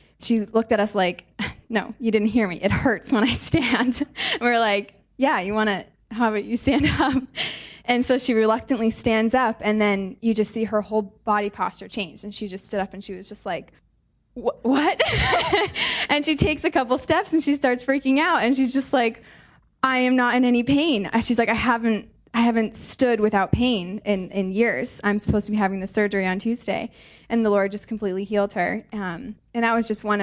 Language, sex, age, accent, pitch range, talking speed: English, female, 20-39, American, 200-235 Hz, 215 wpm